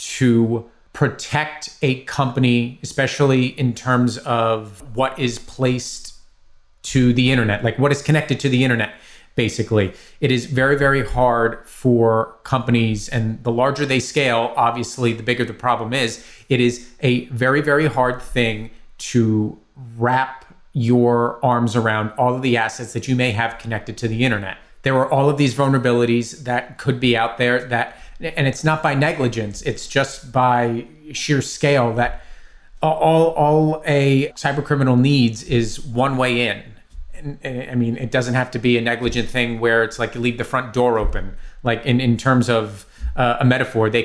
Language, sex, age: English, male, 30-49